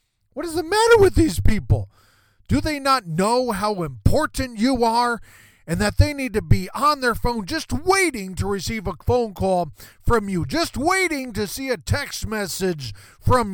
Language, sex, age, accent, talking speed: English, male, 40-59, American, 180 wpm